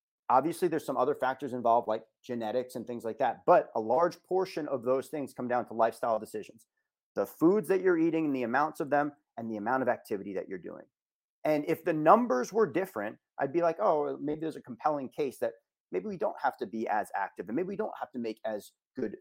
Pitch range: 120-165 Hz